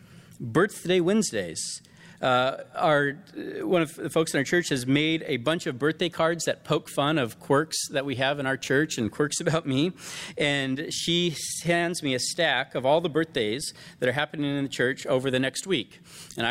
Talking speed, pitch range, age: 195 wpm, 130-165 Hz, 40-59